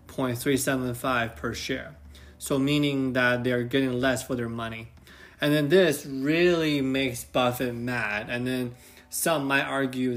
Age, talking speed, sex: 20-39, 135 wpm, male